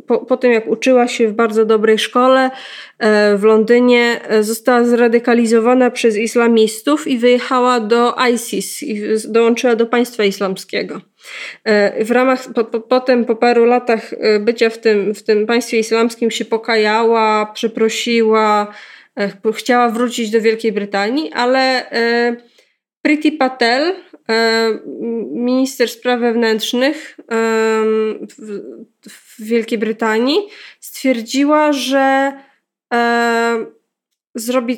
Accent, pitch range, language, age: native, 220-255 Hz, Polish, 20-39